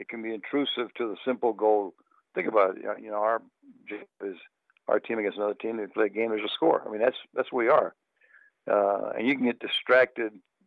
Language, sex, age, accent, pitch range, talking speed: English, male, 60-79, American, 110-125 Hz, 240 wpm